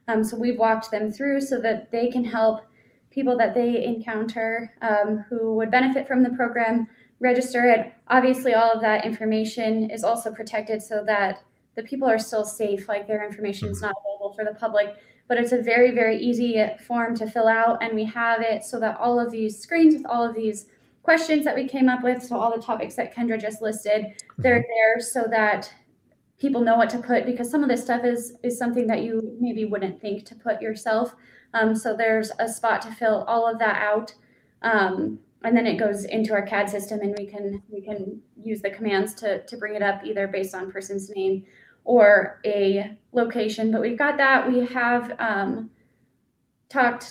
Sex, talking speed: female, 205 wpm